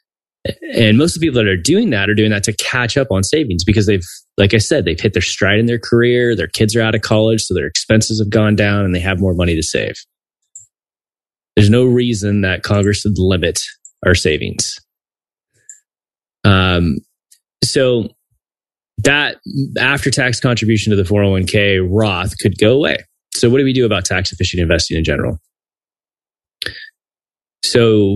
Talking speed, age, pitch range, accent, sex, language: 170 wpm, 20-39, 100-120 Hz, American, male, English